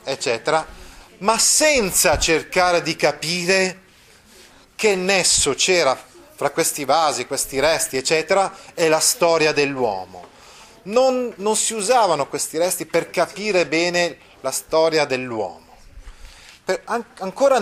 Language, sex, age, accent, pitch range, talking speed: Italian, male, 30-49, native, 130-180 Hz, 110 wpm